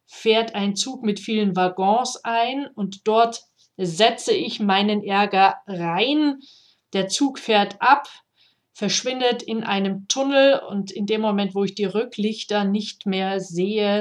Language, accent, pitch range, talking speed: German, German, 185-225 Hz, 140 wpm